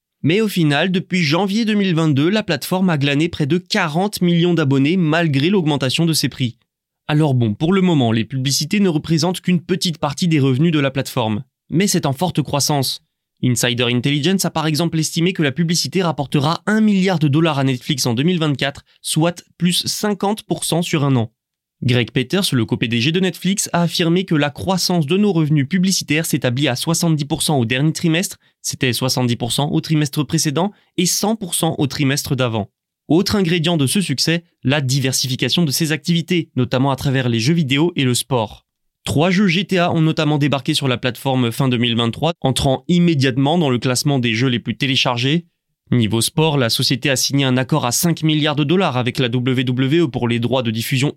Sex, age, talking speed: male, 20-39, 185 wpm